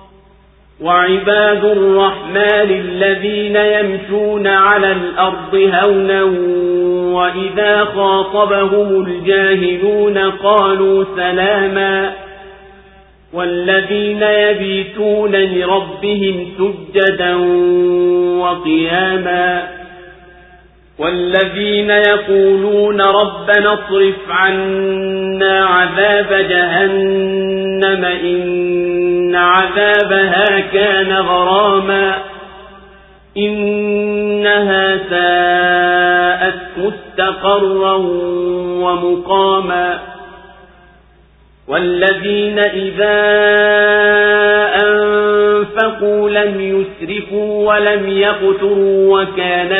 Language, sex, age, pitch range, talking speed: Swahili, male, 50-69, 180-205 Hz, 50 wpm